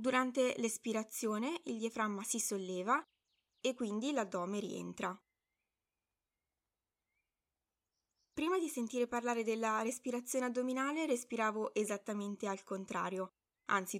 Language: Italian